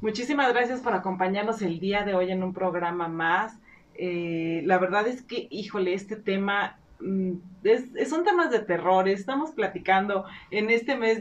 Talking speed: 160 wpm